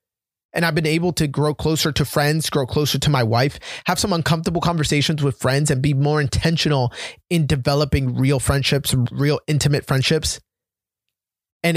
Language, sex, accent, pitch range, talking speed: English, male, American, 125-155 Hz, 165 wpm